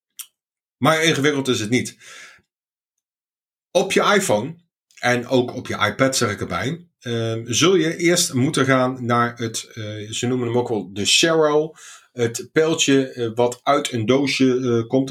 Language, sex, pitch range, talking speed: Dutch, male, 110-140 Hz, 165 wpm